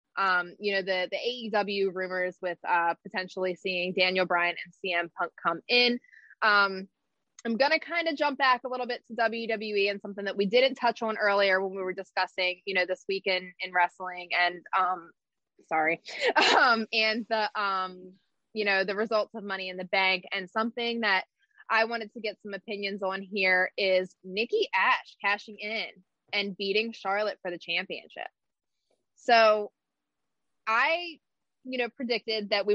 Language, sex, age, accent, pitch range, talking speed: English, female, 20-39, American, 185-225 Hz, 170 wpm